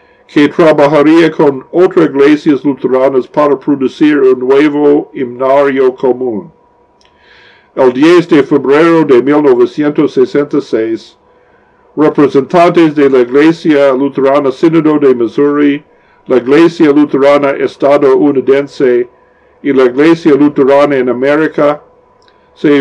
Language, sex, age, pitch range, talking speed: Spanish, male, 50-69, 140-175 Hz, 95 wpm